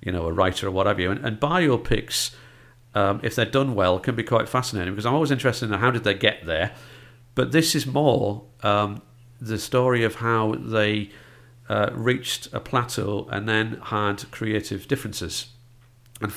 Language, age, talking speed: English, 50-69, 185 wpm